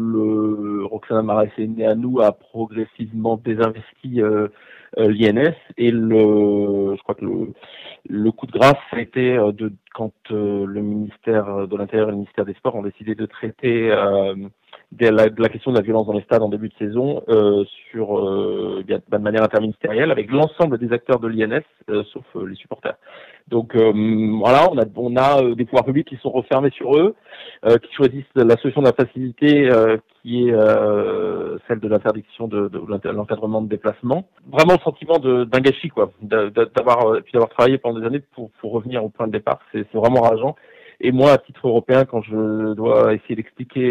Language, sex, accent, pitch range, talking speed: French, male, French, 105-125 Hz, 190 wpm